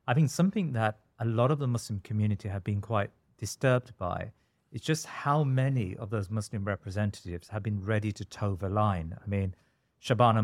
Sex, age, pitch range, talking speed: male, 40-59, 105-125 Hz, 190 wpm